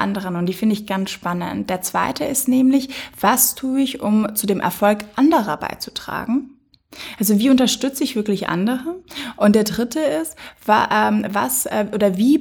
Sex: female